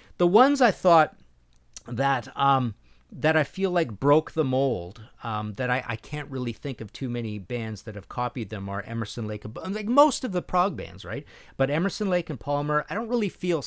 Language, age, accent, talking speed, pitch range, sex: English, 50-69, American, 205 wpm, 105-155 Hz, male